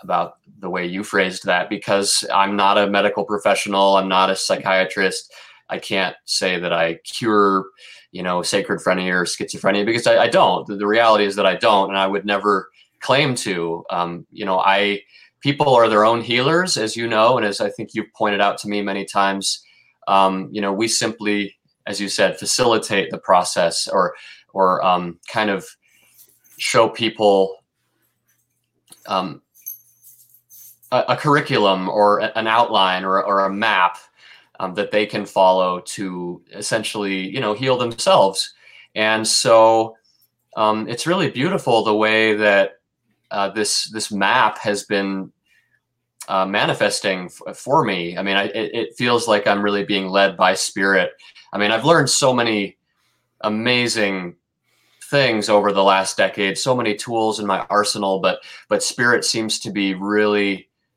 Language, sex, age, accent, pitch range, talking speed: English, male, 20-39, American, 95-110 Hz, 160 wpm